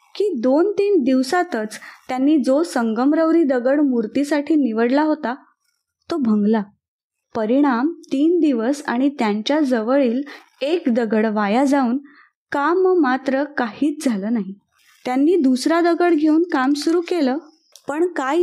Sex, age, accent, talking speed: female, 20-39, native, 115 wpm